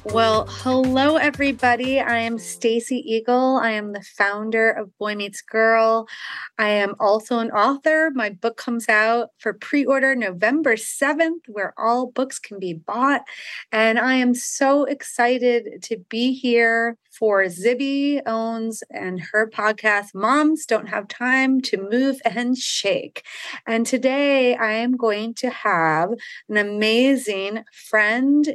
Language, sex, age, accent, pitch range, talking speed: English, female, 30-49, American, 205-255 Hz, 140 wpm